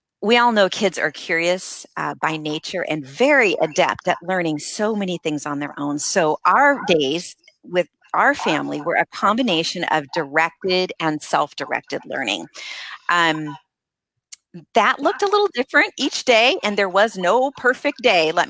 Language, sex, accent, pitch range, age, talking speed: English, female, American, 165-230 Hz, 40-59, 160 wpm